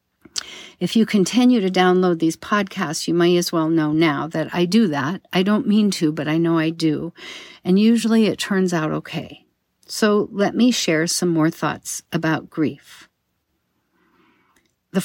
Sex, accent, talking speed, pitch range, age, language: female, American, 170 wpm, 155-205 Hz, 50-69, English